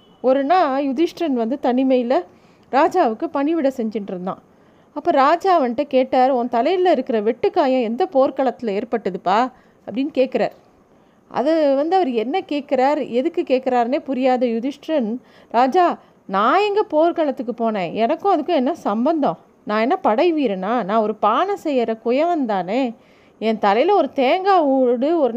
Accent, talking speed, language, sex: native, 130 wpm, Tamil, female